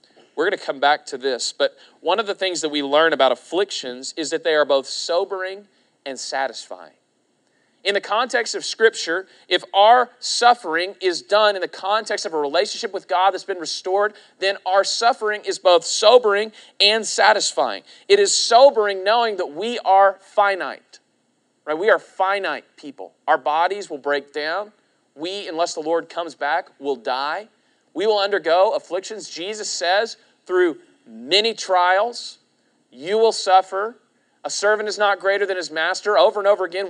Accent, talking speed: American, 165 wpm